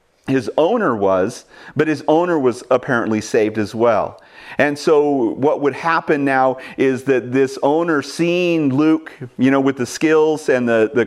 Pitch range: 125-155 Hz